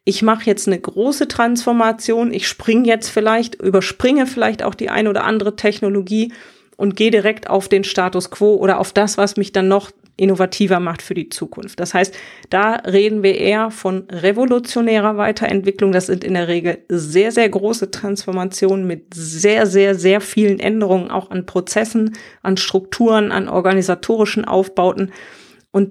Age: 30-49